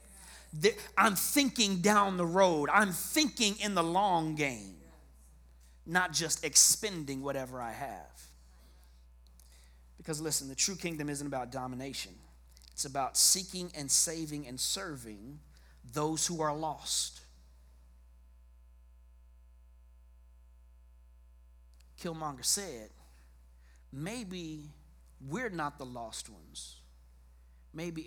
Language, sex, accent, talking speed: English, male, American, 95 wpm